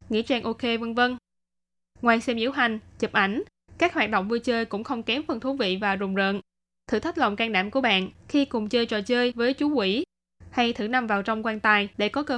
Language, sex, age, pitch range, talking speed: Vietnamese, female, 10-29, 205-265 Hz, 240 wpm